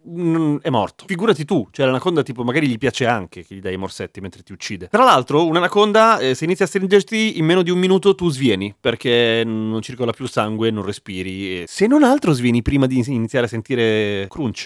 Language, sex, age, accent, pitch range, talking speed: Italian, male, 30-49, native, 115-175 Hz, 215 wpm